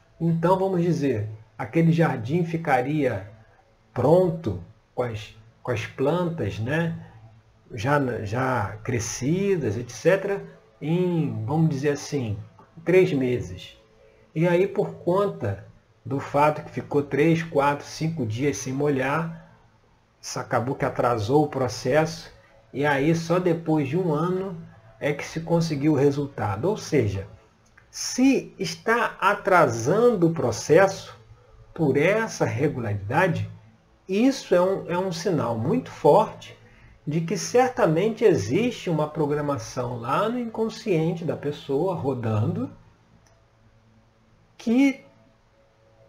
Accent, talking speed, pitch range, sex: Brazilian, 110 wpm, 110-175 Hz, male